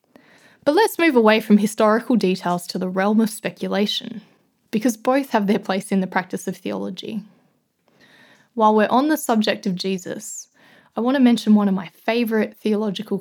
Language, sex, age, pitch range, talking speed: English, female, 20-39, 195-245 Hz, 175 wpm